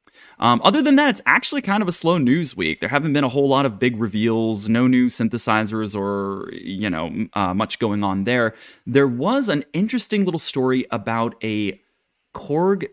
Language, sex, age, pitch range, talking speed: English, male, 20-39, 110-170 Hz, 190 wpm